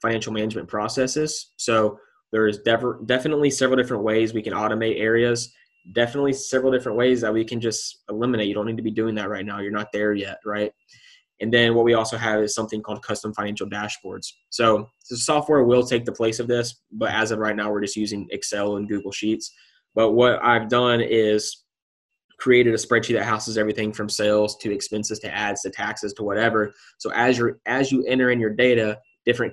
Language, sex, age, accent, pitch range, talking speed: English, male, 20-39, American, 105-125 Hz, 205 wpm